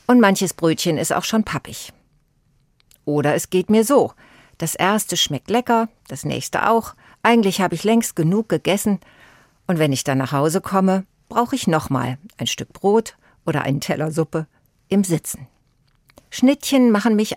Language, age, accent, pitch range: German, 60-79, German, 145-210 Hz